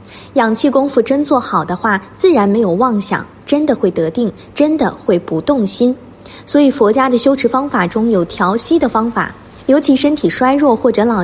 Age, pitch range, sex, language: 20-39, 195-275 Hz, female, Chinese